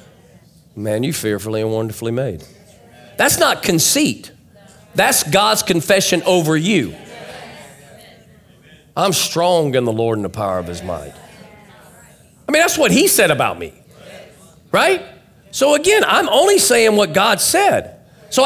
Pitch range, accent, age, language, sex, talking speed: 140-185 Hz, American, 40-59, English, male, 140 wpm